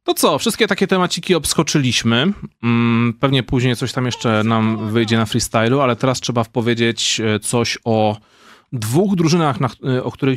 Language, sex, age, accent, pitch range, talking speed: Polish, male, 30-49, native, 115-170 Hz, 145 wpm